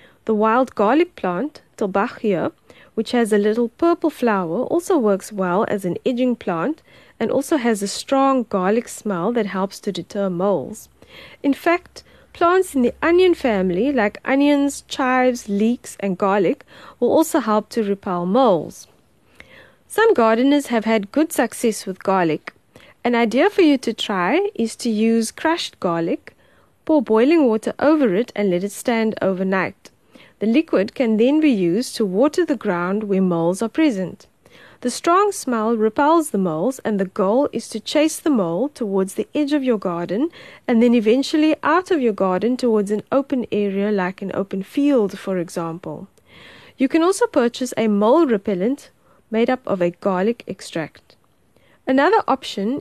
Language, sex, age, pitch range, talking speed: English, female, 20-39, 200-280 Hz, 165 wpm